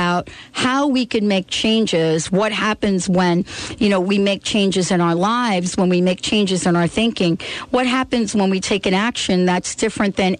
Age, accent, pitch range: 50-69, American, 185-230 Hz